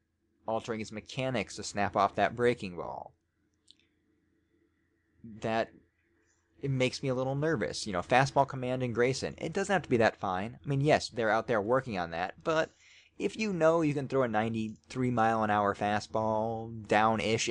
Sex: male